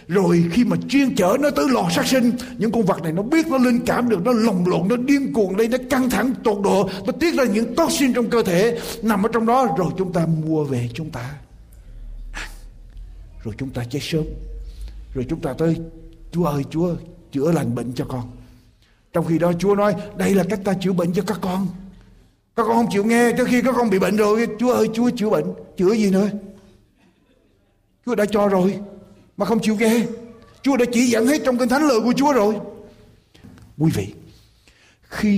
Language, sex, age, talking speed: Vietnamese, male, 60-79, 210 wpm